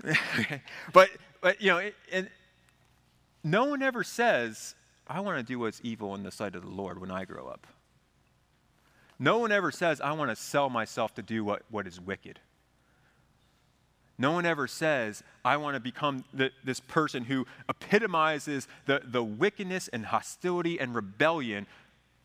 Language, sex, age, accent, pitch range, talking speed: English, male, 30-49, American, 115-165 Hz, 165 wpm